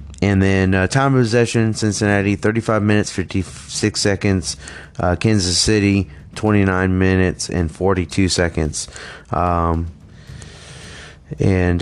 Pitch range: 85-110 Hz